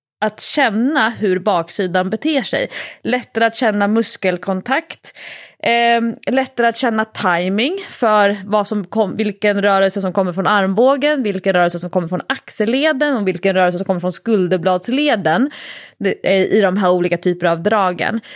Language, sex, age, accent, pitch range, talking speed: English, female, 20-39, Swedish, 190-265 Hz, 155 wpm